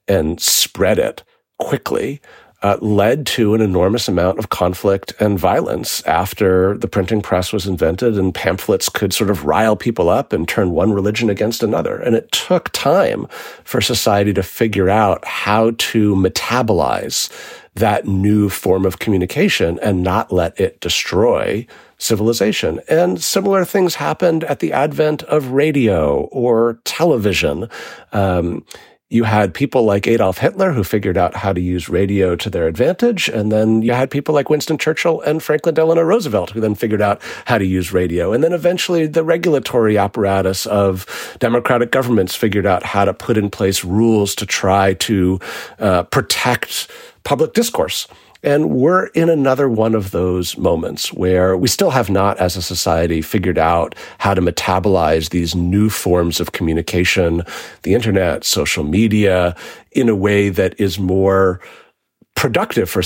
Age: 40-59